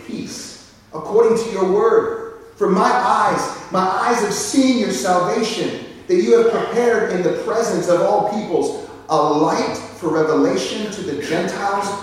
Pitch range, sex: 155-220 Hz, male